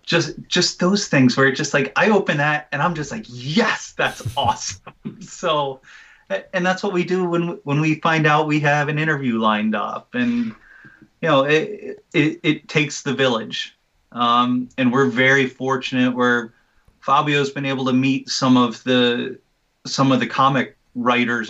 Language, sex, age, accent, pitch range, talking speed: English, male, 30-49, American, 120-150 Hz, 180 wpm